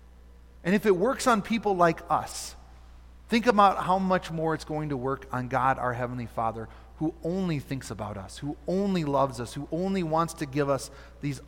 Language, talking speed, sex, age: English, 200 wpm, male, 30-49